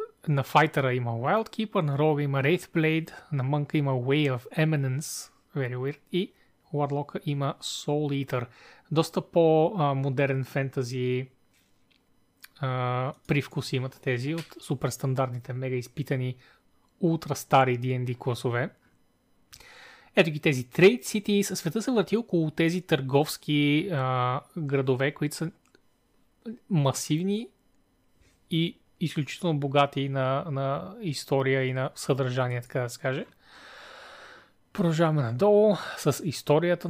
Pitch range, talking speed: 135-165 Hz, 105 wpm